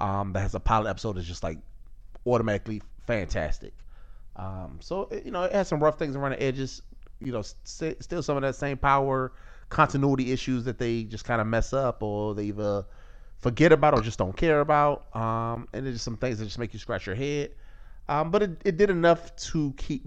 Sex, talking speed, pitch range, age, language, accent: male, 215 wpm, 105-130 Hz, 30-49, English, American